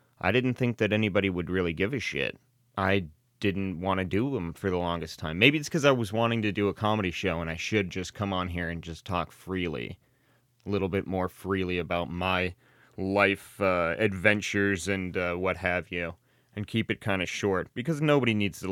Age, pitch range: 30-49, 90-115 Hz